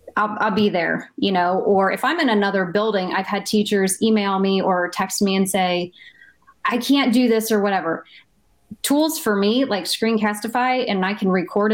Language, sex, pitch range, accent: English, female, 190-225 Hz, American